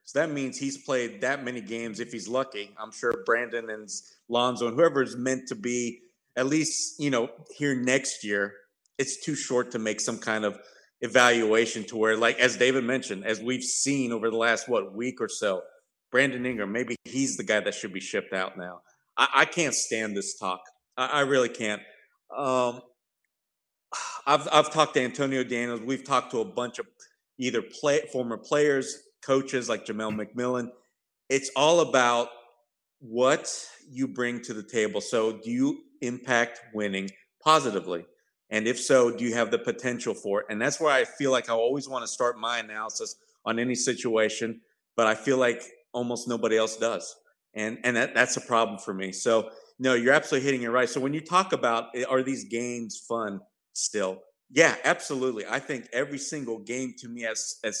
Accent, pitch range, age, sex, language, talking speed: American, 115-130 Hz, 40-59, male, English, 190 wpm